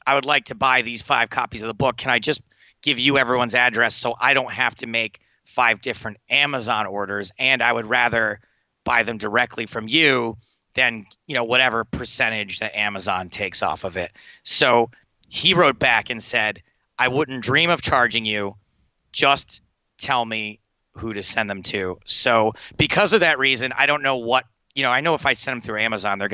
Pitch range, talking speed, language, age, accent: 110-135 Hz, 200 wpm, English, 30-49, American